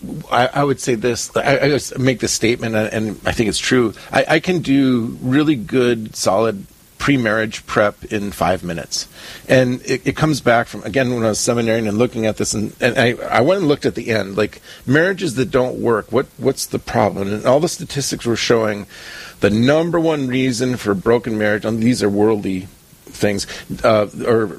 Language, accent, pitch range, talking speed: English, American, 105-130 Hz, 195 wpm